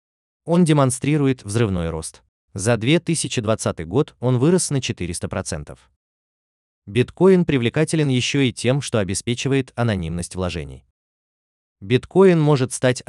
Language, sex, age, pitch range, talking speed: Russian, male, 20-39, 85-130 Hz, 105 wpm